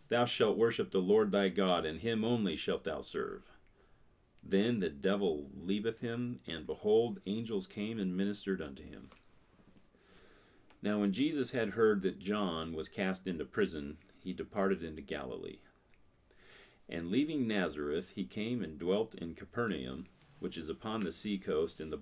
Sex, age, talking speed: male, 40-59, 160 wpm